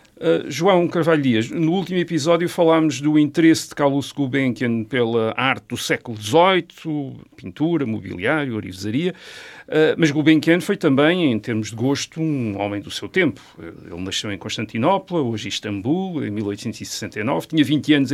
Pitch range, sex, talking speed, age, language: 110-160 Hz, male, 150 wpm, 50-69, Portuguese